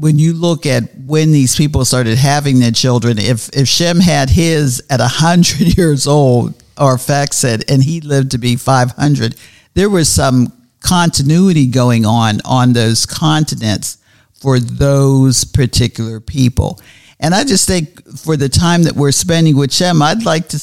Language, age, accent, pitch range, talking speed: English, 50-69, American, 125-155 Hz, 165 wpm